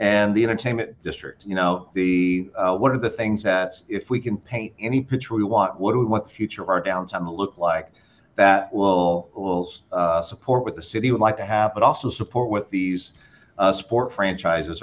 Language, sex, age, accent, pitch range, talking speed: English, male, 50-69, American, 90-110 Hz, 210 wpm